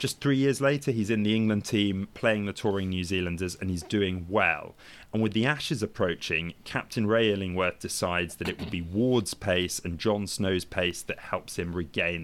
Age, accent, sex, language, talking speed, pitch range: 30-49, British, male, English, 200 wpm, 90-110 Hz